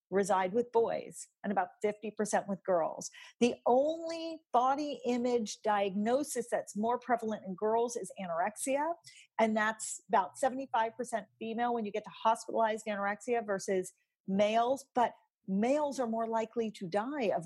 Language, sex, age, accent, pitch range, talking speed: English, female, 40-59, American, 185-230 Hz, 140 wpm